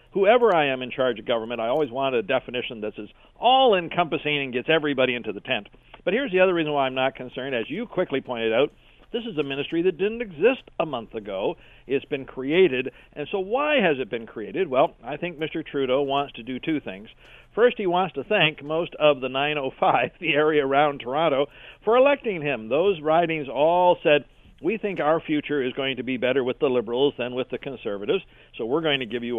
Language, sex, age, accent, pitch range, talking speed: English, male, 50-69, American, 130-175 Hz, 220 wpm